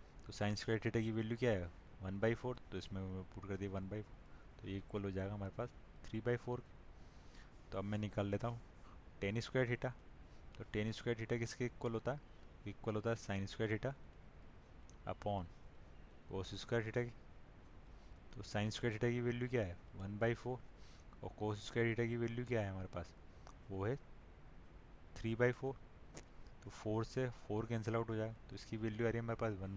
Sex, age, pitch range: male, 20-39, 95-115 Hz